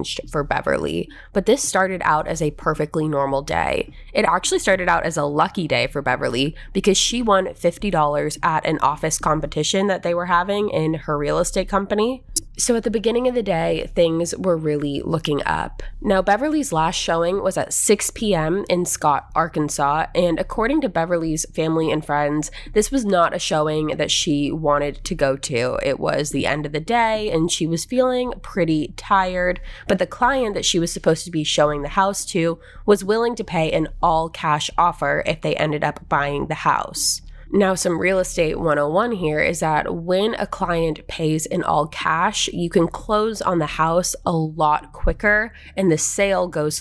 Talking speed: 190 wpm